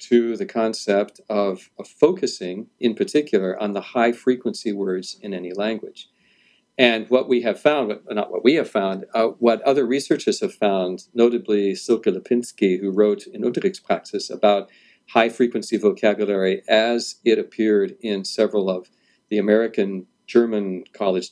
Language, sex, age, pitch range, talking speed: English, male, 50-69, 105-130 Hz, 145 wpm